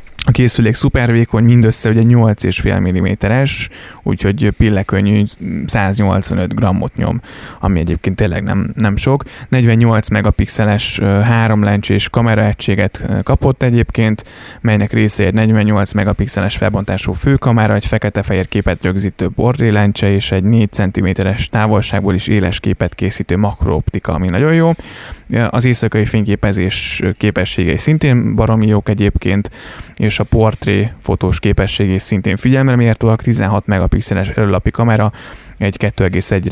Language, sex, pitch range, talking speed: Hungarian, male, 100-115 Hz, 115 wpm